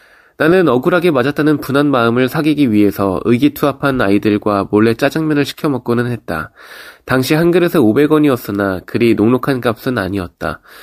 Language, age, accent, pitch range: Korean, 20-39, native, 110-150 Hz